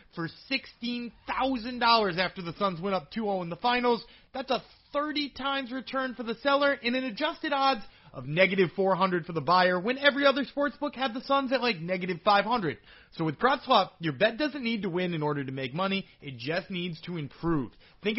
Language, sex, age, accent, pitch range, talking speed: English, male, 30-49, American, 165-235 Hz, 195 wpm